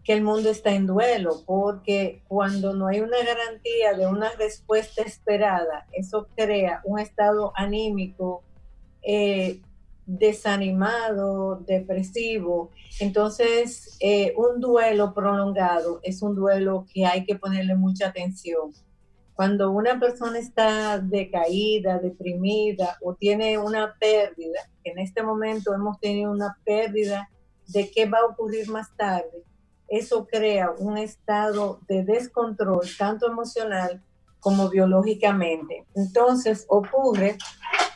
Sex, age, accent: female, 50-69, American